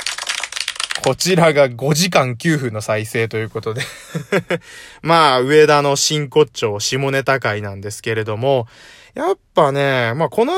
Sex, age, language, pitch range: male, 20-39, Japanese, 115-175 Hz